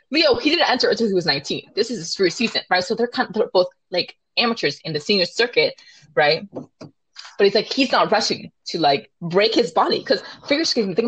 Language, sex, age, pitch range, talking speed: English, female, 20-39, 175-250 Hz, 235 wpm